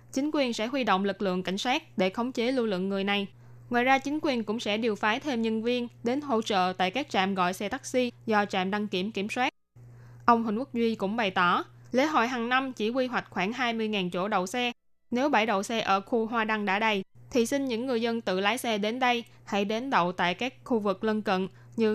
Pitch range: 195-245 Hz